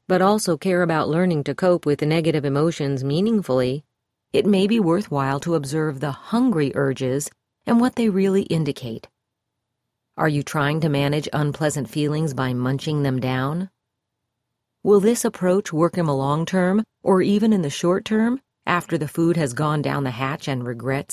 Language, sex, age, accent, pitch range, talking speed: English, female, 40-59, American, 130-185 Hz, 175 wpm